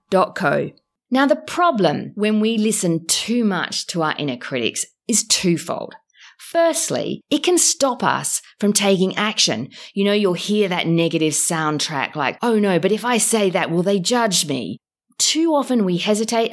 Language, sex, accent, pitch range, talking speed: English, female, Australian, 165-225 Hz, 165 wpm